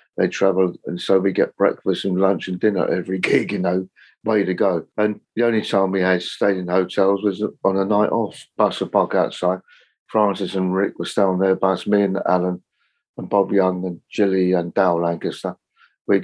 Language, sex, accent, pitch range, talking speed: English, male, British, 90-105 Hz, 205 wpm